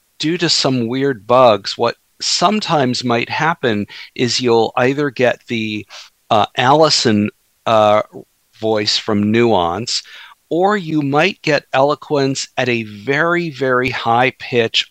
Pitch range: 105-125 Hz